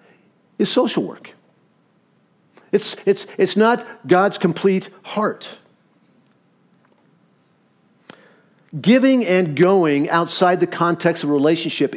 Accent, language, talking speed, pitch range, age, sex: American, English, 90 wpm, 155-195 Hz, 50-69, male